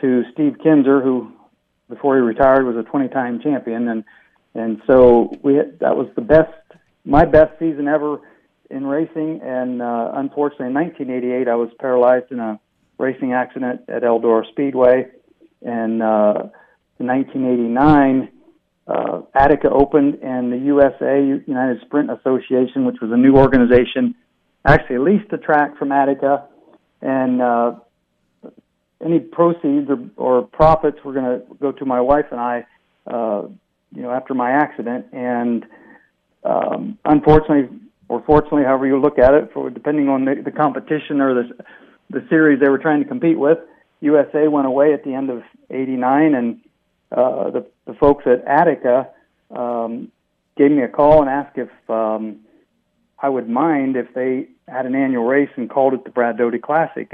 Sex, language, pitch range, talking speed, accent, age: male, English, 125-145 Hz, 160 wpm, American, 50-69